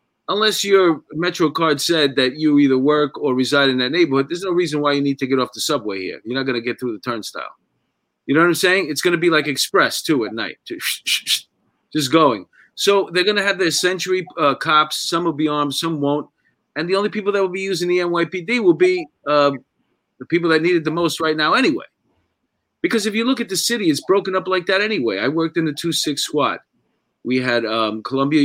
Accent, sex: American, male